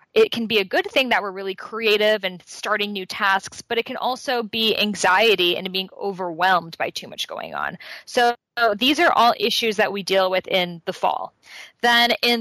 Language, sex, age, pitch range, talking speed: English, female, 10-29, 185-230 Hz, 205 wpm